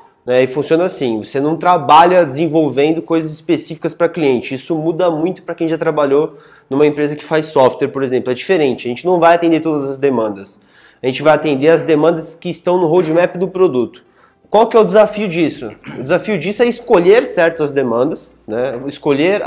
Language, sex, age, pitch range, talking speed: Portuguese, male, 20-39, 140-180 Hz, 195 wpm